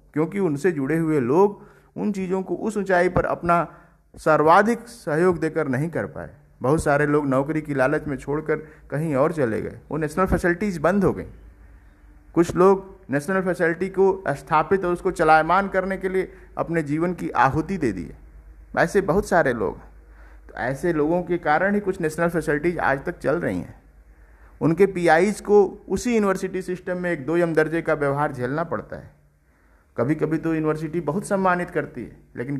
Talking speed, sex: 180 wpm, male